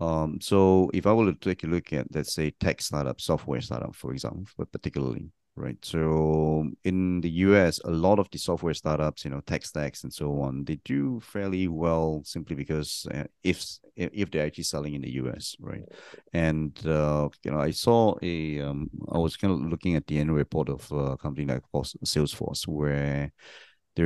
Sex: male